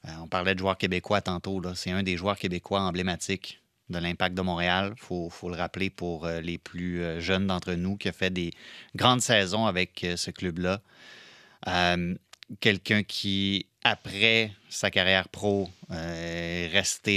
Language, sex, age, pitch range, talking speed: French, male, 30-49, 90-110 Hz, 175 wpm